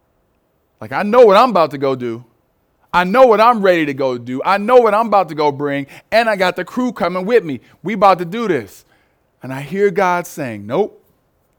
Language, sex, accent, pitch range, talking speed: English, male, American, 135-210 Hz, 230 wpm